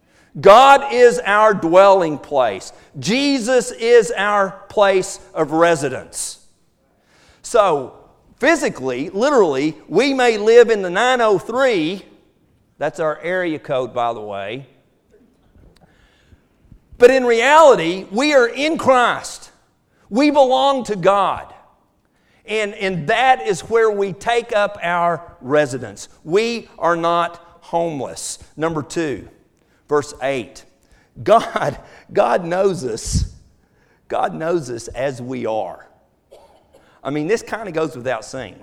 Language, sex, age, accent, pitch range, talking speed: English, male, 50-69, American, 155-240 Hz, 115 wpm